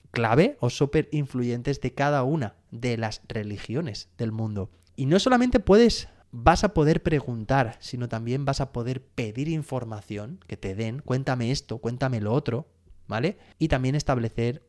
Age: 20-39